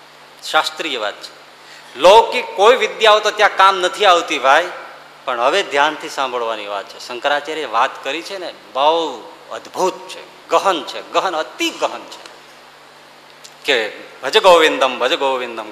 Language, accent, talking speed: Gujarati, native, 55 wpm